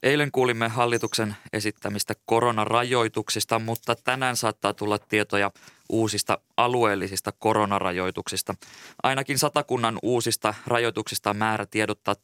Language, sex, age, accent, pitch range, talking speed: Finnish, male, 20-39, native, 100-115 Hz, 100 wpm